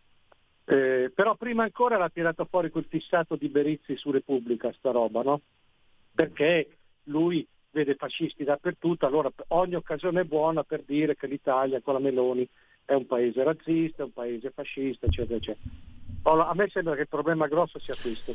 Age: 50-69